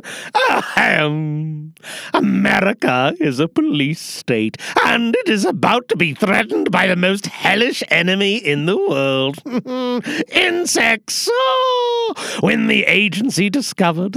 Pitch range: 170-270 Hz